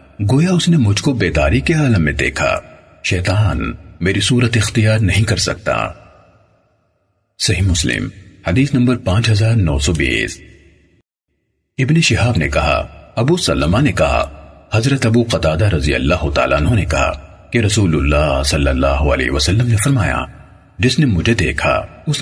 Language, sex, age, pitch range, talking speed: Urdu, male, 50-69, 90-125 Hz, 145 wpm